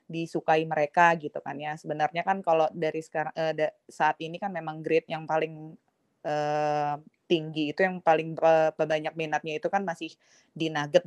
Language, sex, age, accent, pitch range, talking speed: Indonesian, female, 20-39, native, 155-185 Hz, 170 wpm